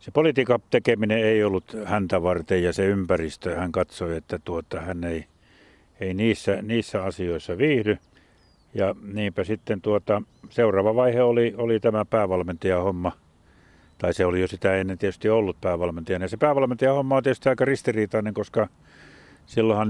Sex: male